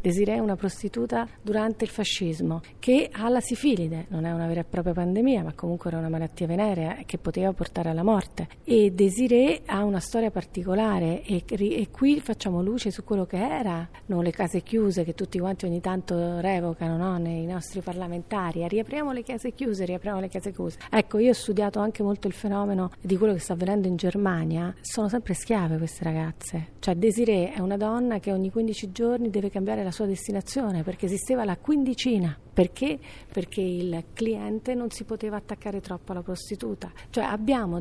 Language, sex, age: Italian, female, 40-59